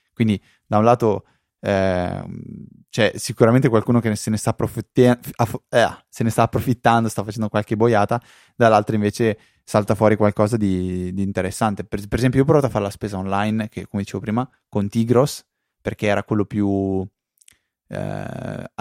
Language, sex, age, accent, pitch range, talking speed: Italian, male, 20-39, native, 100-125 Hz, 150 wpm